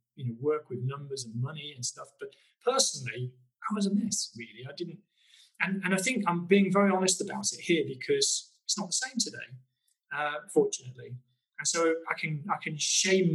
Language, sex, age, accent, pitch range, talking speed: English, male, 20-39, British, 130-170 Hz, 200 wpm